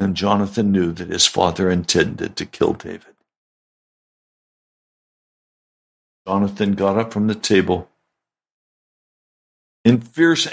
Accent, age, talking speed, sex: American, 60-79, 105 wpm, male